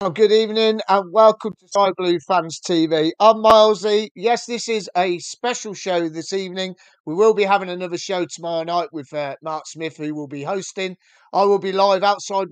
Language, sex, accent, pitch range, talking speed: English, male, British, 155-195 Hz, 195 wpm